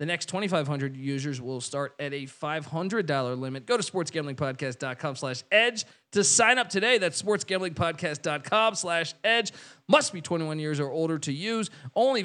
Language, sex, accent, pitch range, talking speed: English, male, American, 150-185 Hz, 155 wpm